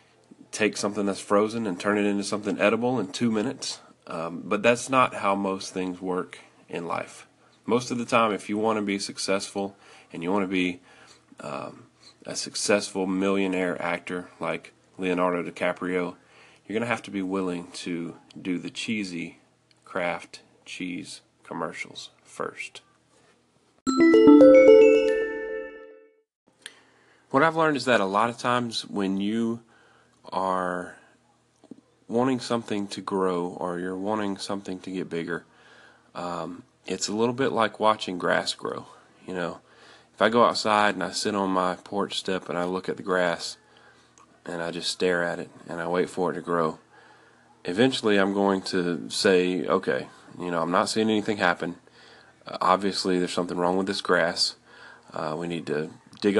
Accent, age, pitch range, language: American, 30-49, 90-110 Hz, English